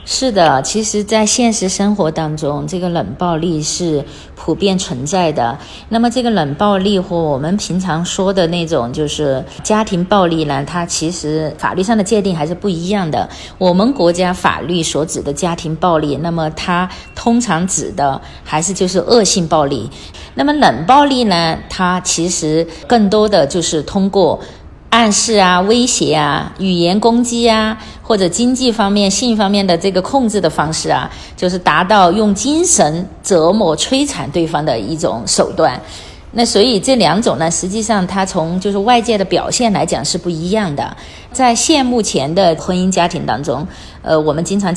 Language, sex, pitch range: Chinese, female, 160-210 Hz